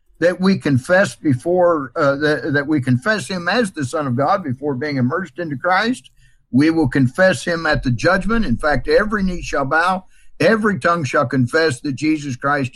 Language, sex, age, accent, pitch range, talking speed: English, male, 60-79, American, 130-180 Hz, 190 wpm